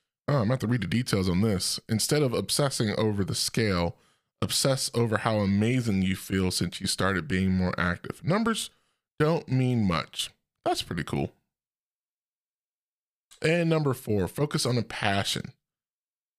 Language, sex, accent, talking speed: English, male, American, 150 wpm